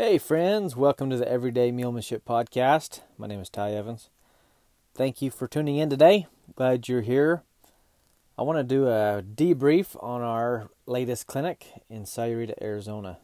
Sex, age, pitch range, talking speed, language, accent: male, 30-49, 105-130 Hz, 160 wpm, English, American